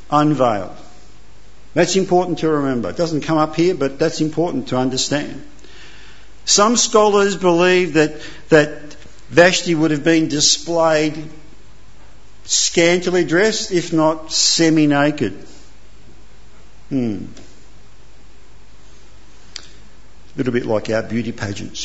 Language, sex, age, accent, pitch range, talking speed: English, male, 50-69, Australian, 120-165 Hz, 105 wpm